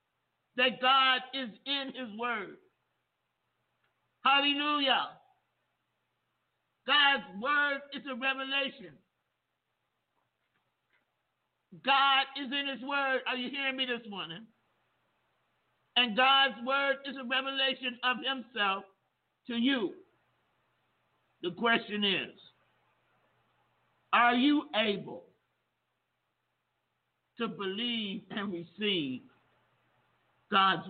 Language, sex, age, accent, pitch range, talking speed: English, male, 50-69, American, 235-280 Hz, 85 wpm